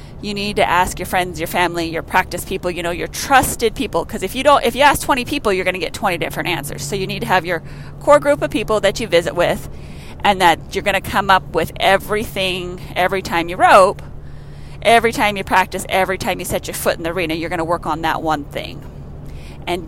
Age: 30-49